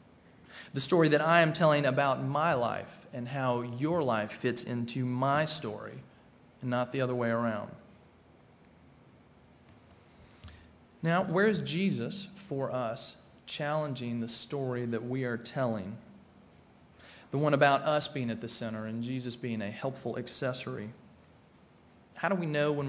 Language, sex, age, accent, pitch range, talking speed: English, male, 30-49, American, 115-145 Hz, 145 wpm